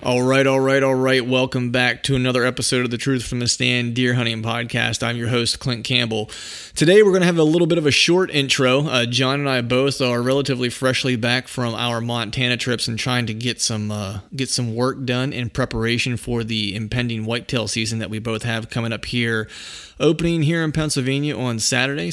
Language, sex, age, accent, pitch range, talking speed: English, male, 30-49, American, 110-130 Hz, 220 wpm